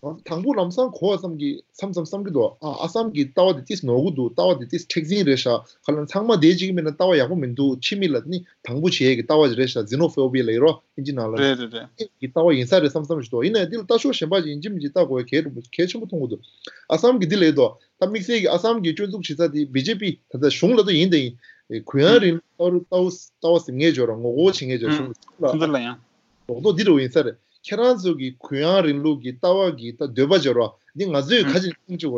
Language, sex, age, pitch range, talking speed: English, male, 30-49, 135-190 Hz, 30 wpm